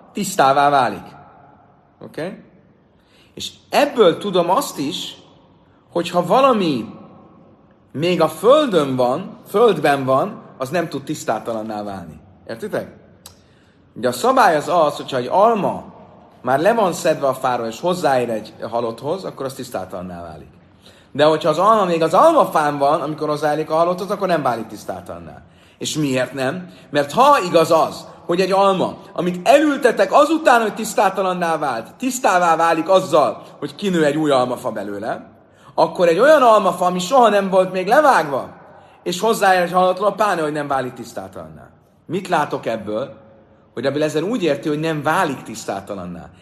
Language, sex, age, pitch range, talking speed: Hungarian, male, 30-49, 120-180 Hz, 150 wpm